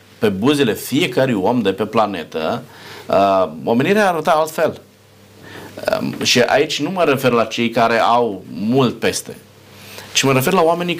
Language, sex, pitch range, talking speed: Romanian, male, 105-140 Hz, 140 wpm